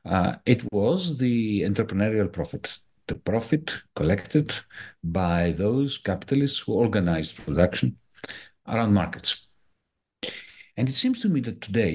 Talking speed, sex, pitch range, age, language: 120 wpm, male, 85-135 Hz, 50-69, English